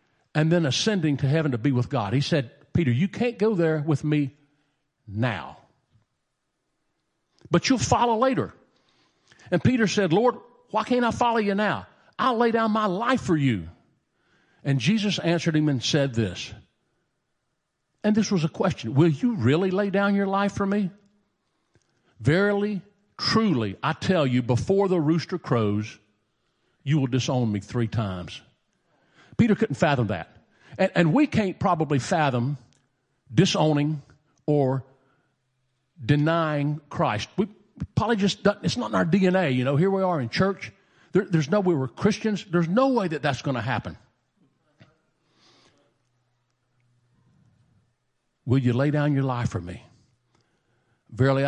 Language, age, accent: English, 50-69, American